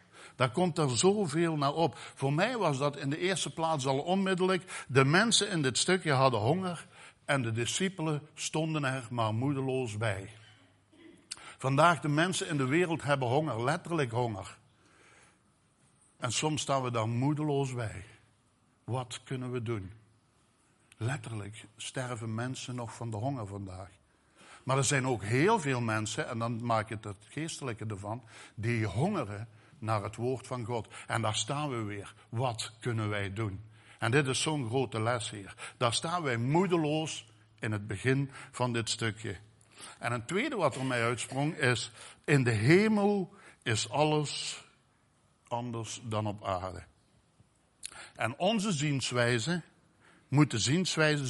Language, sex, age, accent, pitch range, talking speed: Dutch, male, 60-79, Dutch, 110-145 Hz, 150 wpm